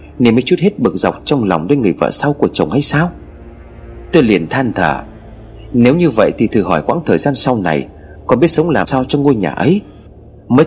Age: 30-49